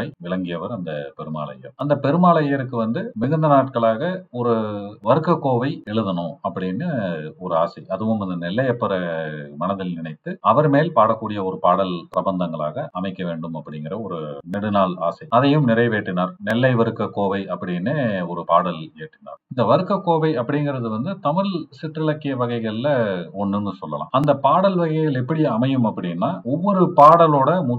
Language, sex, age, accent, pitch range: Tamil, male, 40-59, native, 95-135 Hz